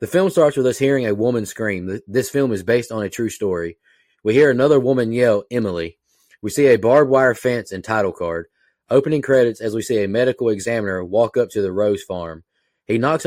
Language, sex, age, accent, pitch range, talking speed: English, male, 20-39, American, 95-120 Hz, 215 wpm